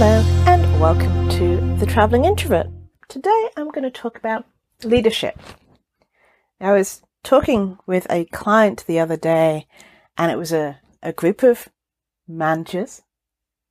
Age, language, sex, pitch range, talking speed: 40-59, English, female, 155-210 Hz, 135 wpm